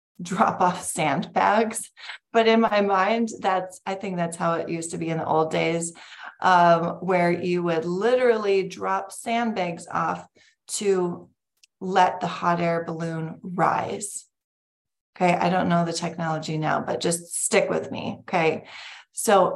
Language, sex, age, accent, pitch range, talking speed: English, female, 30-49, American, 170-215 Hz, 150 wpm